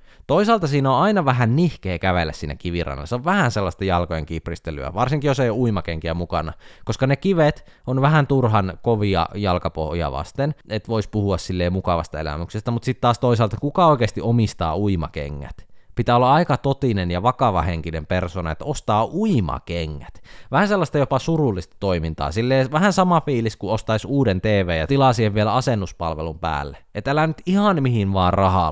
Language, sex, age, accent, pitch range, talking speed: Finnish, male, 20-39, native, 90-130 Hz, 165 wpm